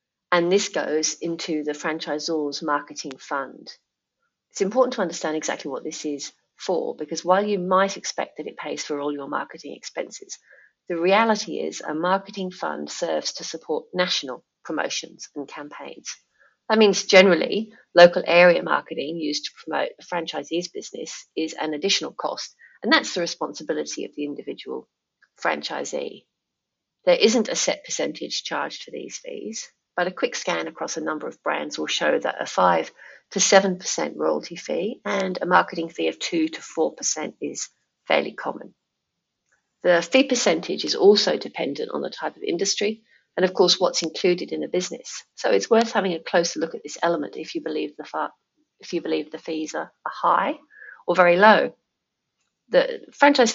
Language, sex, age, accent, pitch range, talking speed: English, female, 40-59, British, 160-215 Hz, 170 wpm